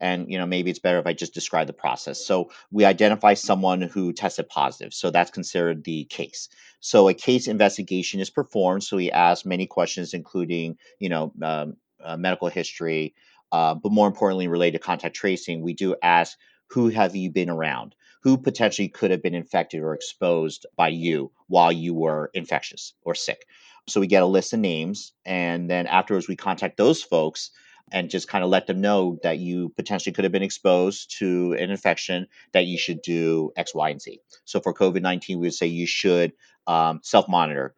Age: 50-69